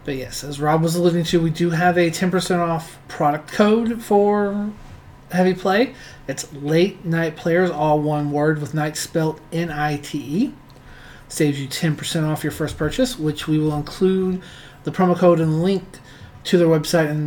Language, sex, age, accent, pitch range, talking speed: English, male, 30-49, American, 145-175 Hz, 180 wpm